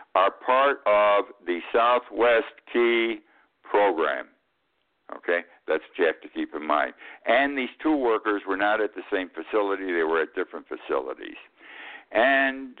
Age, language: 60-79, English